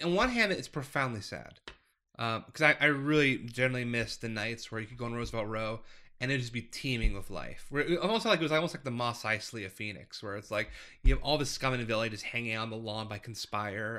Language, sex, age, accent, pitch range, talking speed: English, male, 20-39, American, 115-150 Hz, 255 wpm